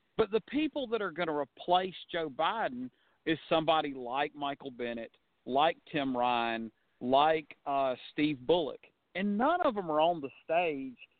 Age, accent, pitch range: 50-69, American, 135-175 Hz